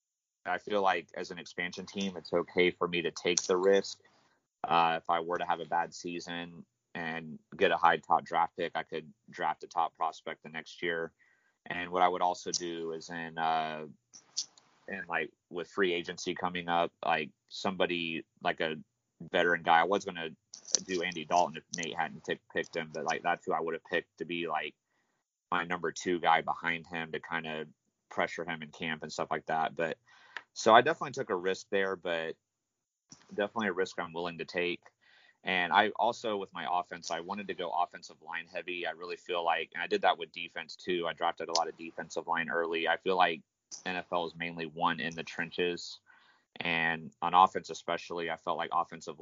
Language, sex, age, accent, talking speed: English, male, 30-49, American, 205 wpm